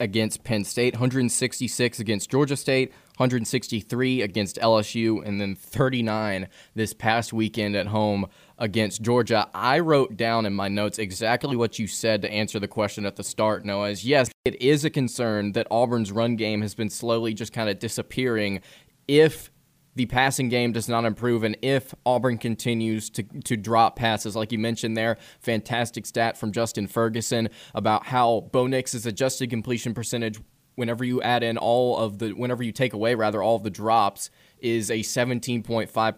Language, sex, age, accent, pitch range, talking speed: English, male, 20-39, American, 110-130 Hz, 170 wpm